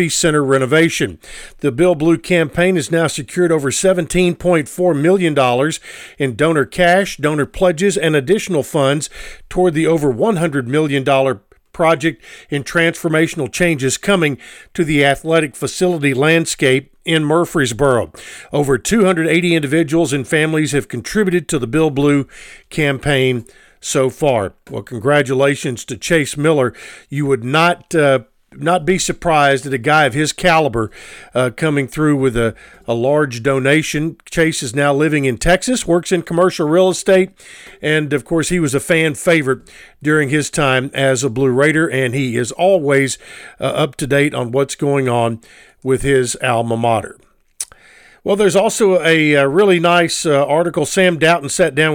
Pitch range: 140-170 Hz